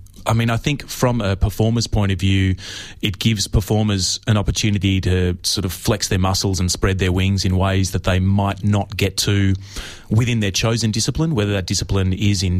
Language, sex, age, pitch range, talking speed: English, male, 30-49, 95-105 Hz, 200 wpm